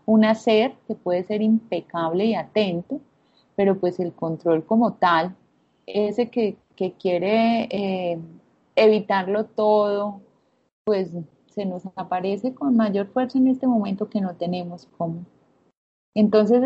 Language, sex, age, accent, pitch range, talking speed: Spanish, female, 30-49, Colombian, 185-230 Hz, 130 wpm